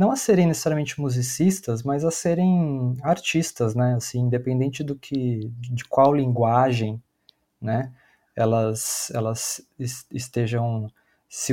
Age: 20-39